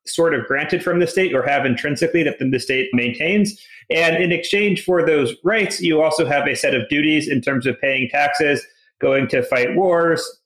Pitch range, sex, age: 135-170 Hz, male, 30-49